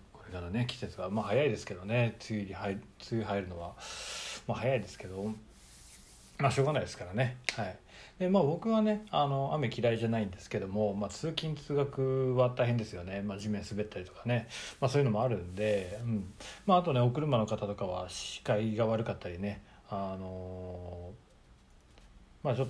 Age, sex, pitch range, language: 40-59, male, 100-130 Hz, Japanese